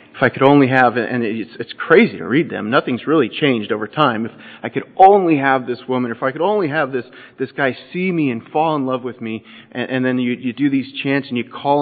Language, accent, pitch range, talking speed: English, American, 105-135 Hz, 260 wpm